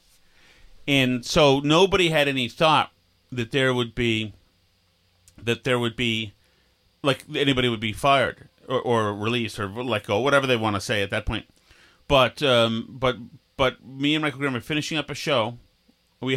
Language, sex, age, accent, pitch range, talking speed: English, male, 30-49, American, 110-130 Hz, 170 wpm